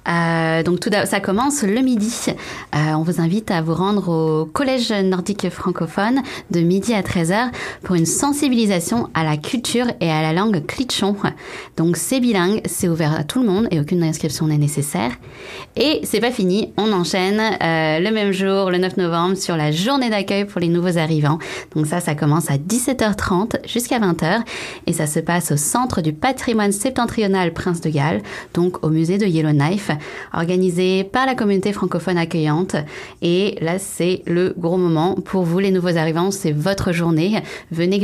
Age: 20-39